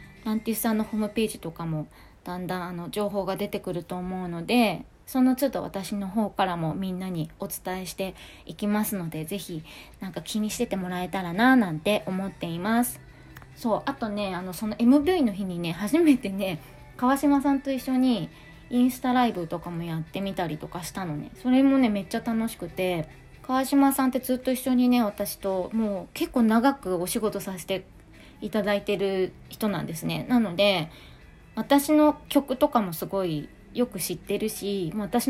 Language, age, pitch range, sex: Japanese, 20-39, 180-240 Hz, female